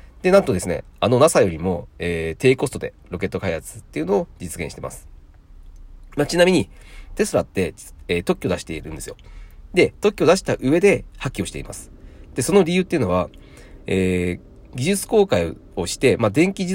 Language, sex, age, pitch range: Japanese, male, 40-59, 85-135 Hz